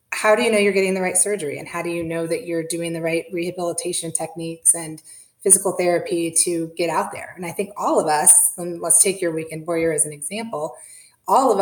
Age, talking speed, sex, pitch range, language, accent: 30-49, 230 wpm, female, 160-185 Hz, English, American